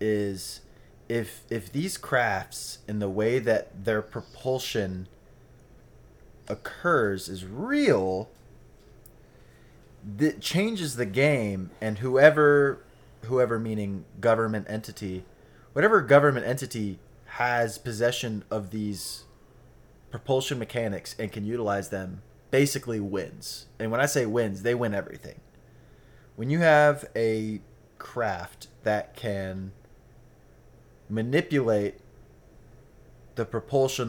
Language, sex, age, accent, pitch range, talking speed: English, male, 20-39, American, 100-125 Hz, 100 wpm